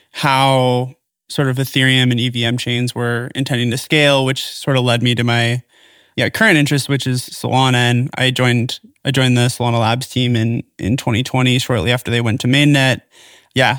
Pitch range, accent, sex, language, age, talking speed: 125-140 Hz, American, male, English, 20-39, 185 wpm